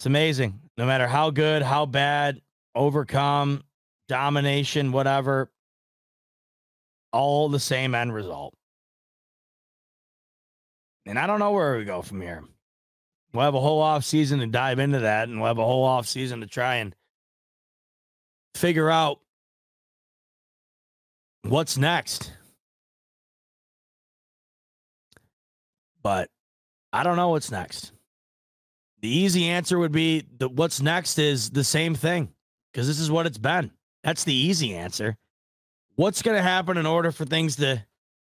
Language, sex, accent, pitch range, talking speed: English, male, American, 120-155 Hz, 135 wpm